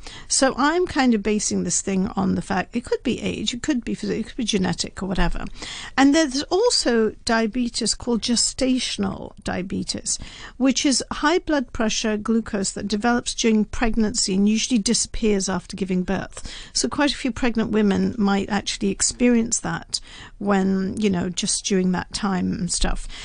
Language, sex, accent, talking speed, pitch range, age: English, female, British, 165 wpm, 195-240 Hz, 50-69